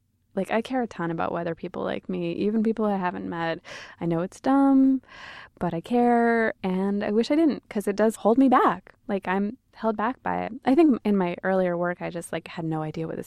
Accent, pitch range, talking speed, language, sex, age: American, 170-230 Hz, 240 wpm, English, female, 20-39